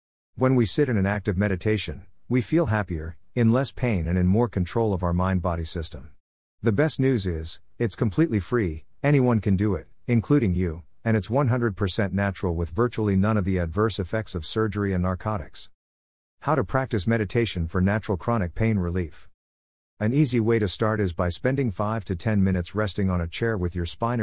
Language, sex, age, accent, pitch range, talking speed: English, male, 50-69, American, 90-115 Hz, 190 wpm